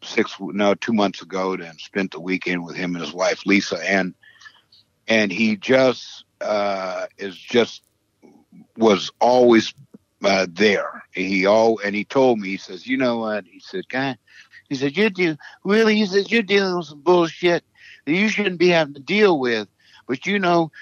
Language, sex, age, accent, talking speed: English, male, 60-79, American, 180 wpm